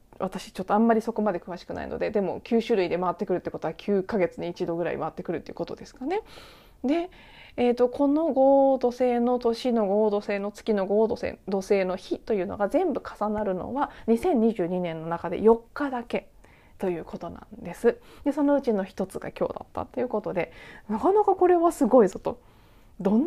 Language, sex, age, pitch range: Japanese, female, 20-39, 190-285 Hz